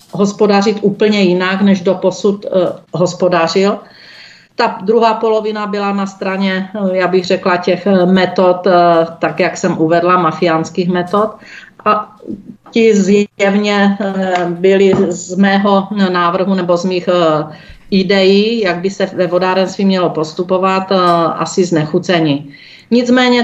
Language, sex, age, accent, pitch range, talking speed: Czech, female, 40-59, native, 180-205 Hz, 130 wpm